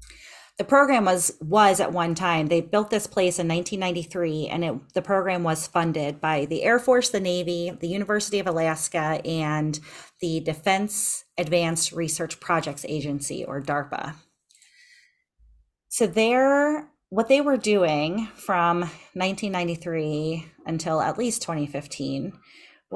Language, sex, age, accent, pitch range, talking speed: English, female, 30-49, American, 155-200 Hz, 130 wpm